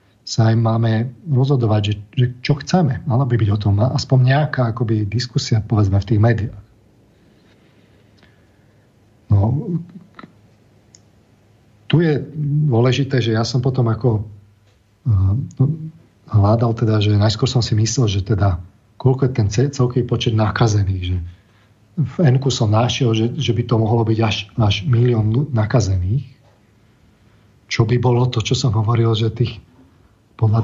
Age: 40-59